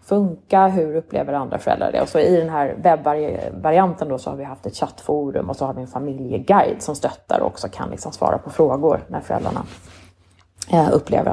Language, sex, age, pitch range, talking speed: Swedish, female, 30-49, 145-190 Hz, 190 wpm